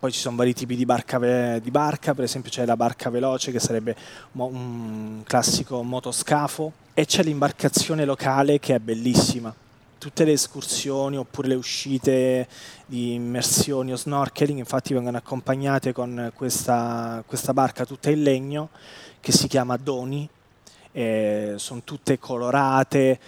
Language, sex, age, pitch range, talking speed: Italian, male, 20-39, 125-150 Hz, 140 wpm